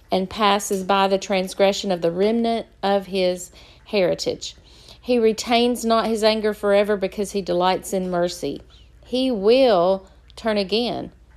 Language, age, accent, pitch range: English, 50-69, American, 185-220 Hz